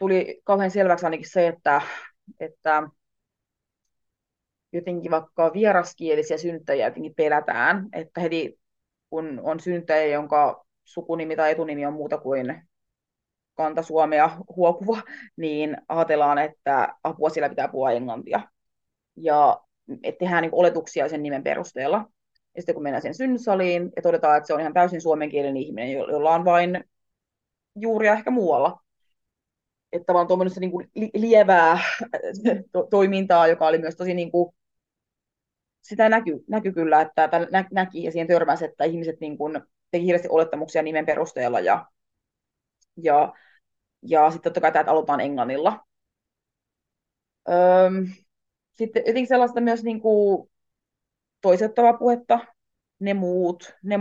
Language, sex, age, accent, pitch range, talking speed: Finnish, female, 30-49, native, 155-190 Hz, 130 wpm